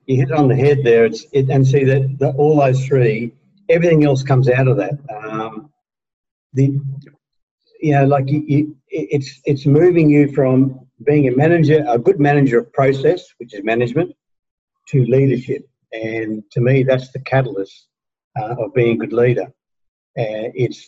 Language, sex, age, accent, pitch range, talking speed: English, male, 50-69, Australian, 125-145 Hz, 175 wpm